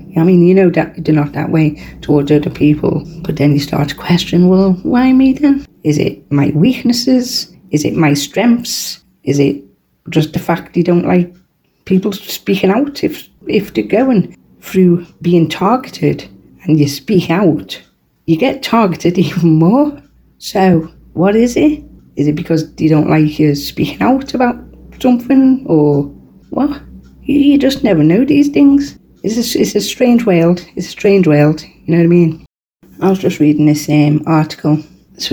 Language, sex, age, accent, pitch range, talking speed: English, female, 40-59, British, 150-190 Hz, 175 wpm